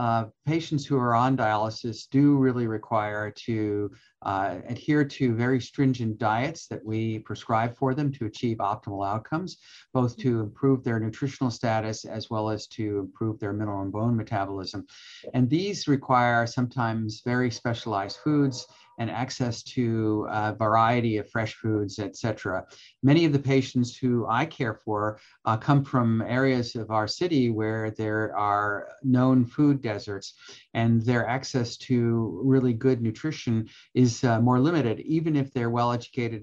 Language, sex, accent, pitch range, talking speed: English, male, American, 110-130 Hz, 155 wpm